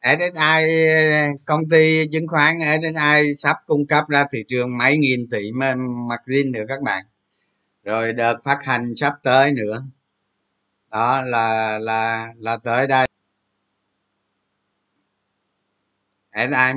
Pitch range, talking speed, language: 105-130 Hz, 120 wpm, Vietnamese